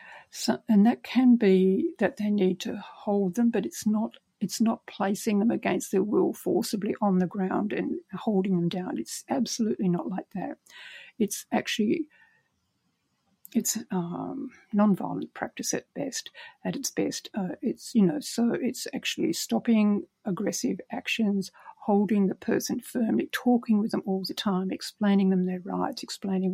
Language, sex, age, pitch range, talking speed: English, female, 60-79, 190-230 Hz, 160 wpm